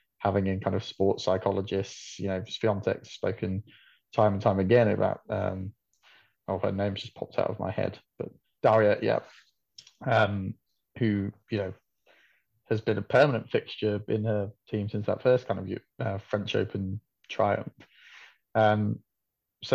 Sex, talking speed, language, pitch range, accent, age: male, 155 wpm, English, 105-125 Hz, British, 20-39